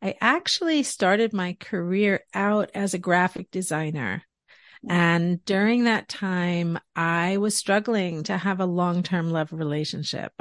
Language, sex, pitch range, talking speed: English, female, 175-215 Hz, 140 wpm